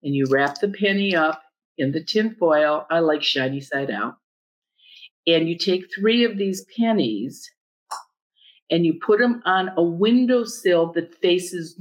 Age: 50-69